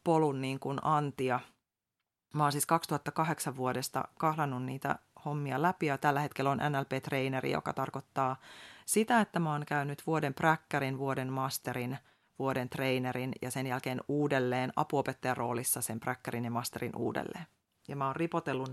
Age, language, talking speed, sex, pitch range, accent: 30-49, Finnish, 145 wpm, female, 130-150 Hz, native